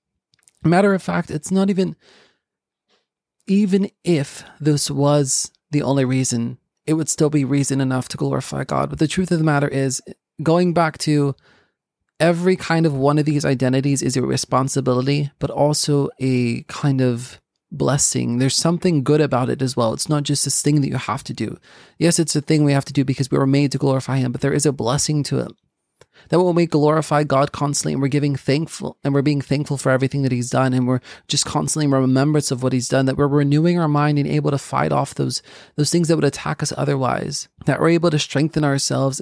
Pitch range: 135-150 Hz